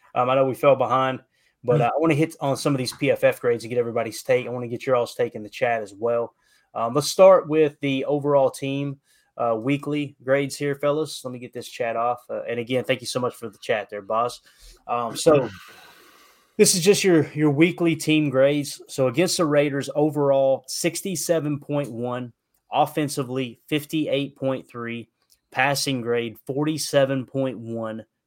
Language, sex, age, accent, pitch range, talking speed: English, male, 20-39, American, 120-150 Hz, 180 wpm